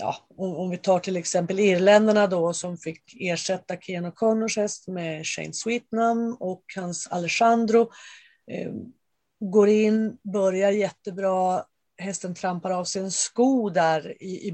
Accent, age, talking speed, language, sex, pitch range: native, 40-59, 135 wpm, Swedish, female, 180-215 Hz